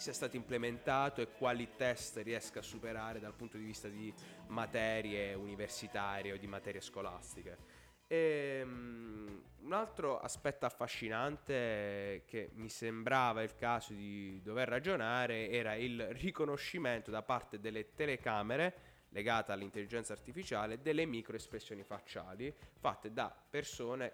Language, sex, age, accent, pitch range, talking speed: Italian, male, 20-39, native, 110-130 Hz, 120 wpm